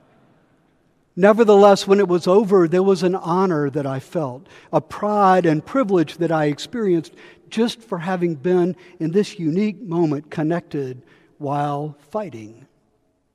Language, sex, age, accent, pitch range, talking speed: English, male, 60-79, American, 145-190 Hz, 135 wpm